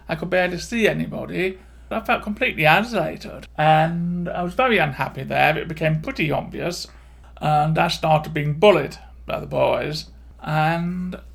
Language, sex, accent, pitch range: English, male, British, 160-205 Hz